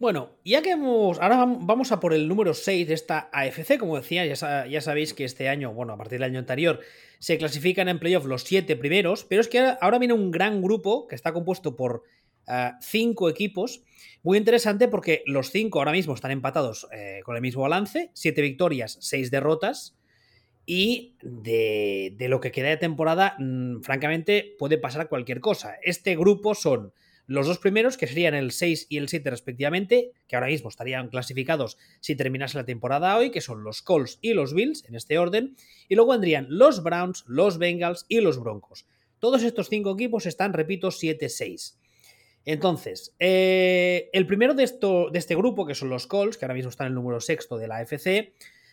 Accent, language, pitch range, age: Spanish, Spanish, 135-200 Hz, 20-39